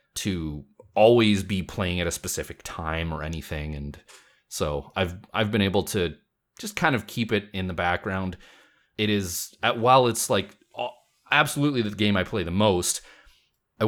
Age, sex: 30-49, male